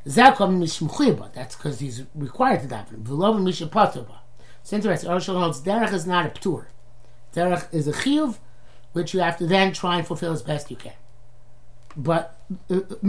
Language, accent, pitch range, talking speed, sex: English, American, 120-175 Hz, 150 wpm, male